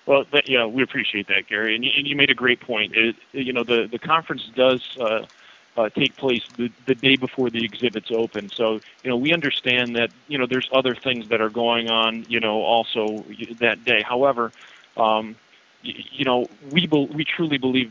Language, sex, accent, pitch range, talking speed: English, male, American, 110-130 Hz, 200 wpm